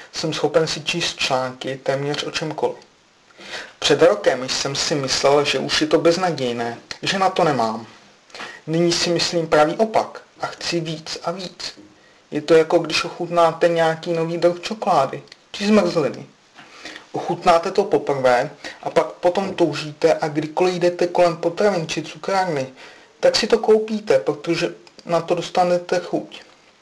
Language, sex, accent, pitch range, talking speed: Czech, male, native, 145-175 Hz, 150 wpm